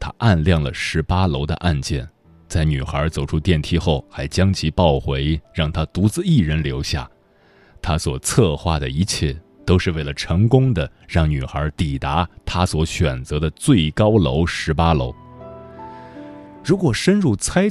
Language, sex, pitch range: Chinese, male, 75-105 Hz